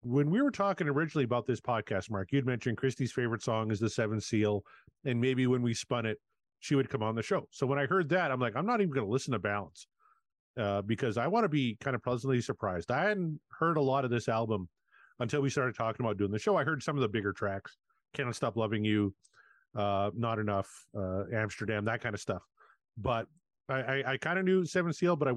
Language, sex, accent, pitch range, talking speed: English, male, American, 105-140 Hz, 240 wpm